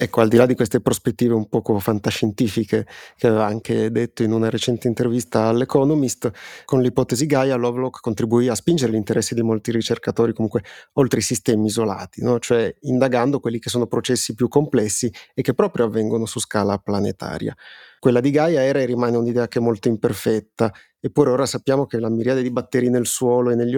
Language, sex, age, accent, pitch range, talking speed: Italian, male, 30-49, native, 115-130 Hz, 185 wpm